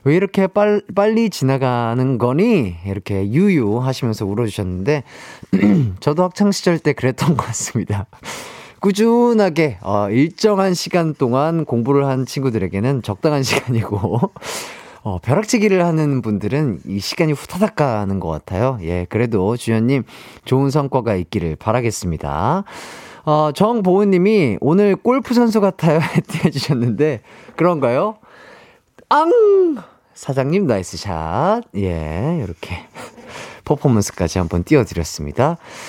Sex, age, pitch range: male, 30-49, 105-170 Hz